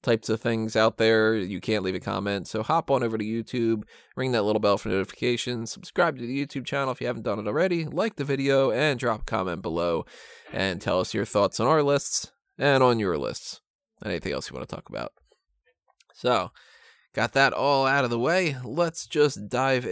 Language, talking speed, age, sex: English, 215 wpm, 20-39, male